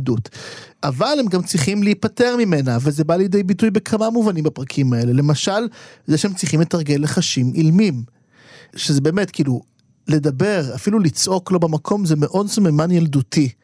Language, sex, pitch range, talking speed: Hebrew, male, 140-185 Hz, 145 wpm